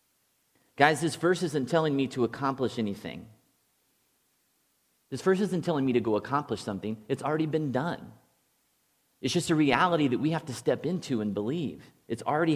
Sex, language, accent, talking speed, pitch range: male, English, American, 170 wpm, 120-155 Hz